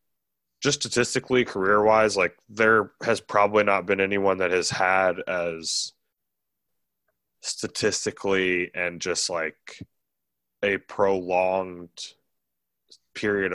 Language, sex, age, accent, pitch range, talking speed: English, male, 20-39, American, 85-105 Hz, 95 wpm